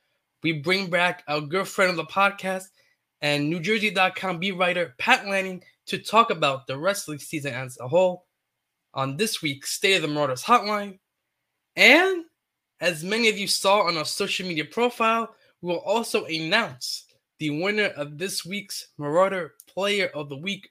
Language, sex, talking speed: English, male, 160 wpm